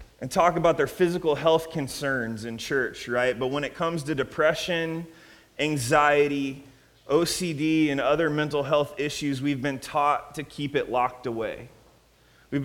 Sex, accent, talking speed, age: male, American, 150 wpm, 20-39